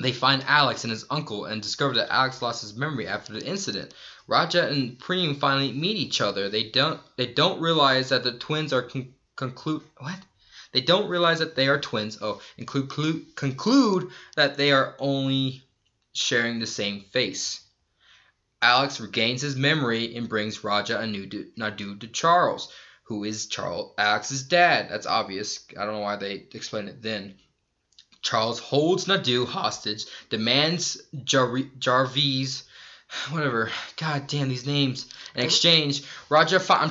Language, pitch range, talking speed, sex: English, 125-170 Hz, 155 wpm, male